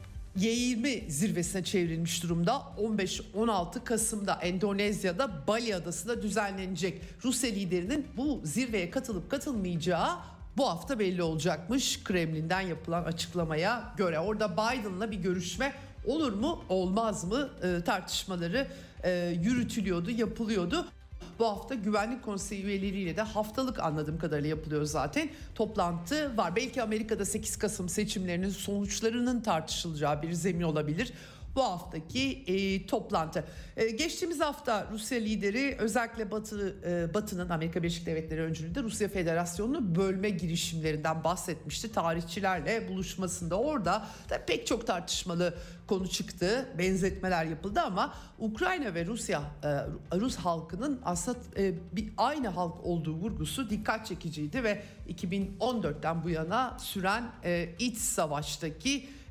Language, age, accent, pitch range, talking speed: Turkish, 50-69, native, 170-225 Hz, 115 wpm